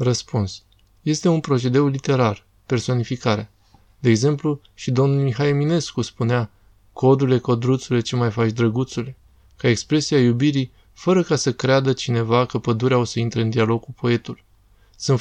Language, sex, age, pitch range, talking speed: Romanian, male, 20-39, 115-140 Hz, 145 wpm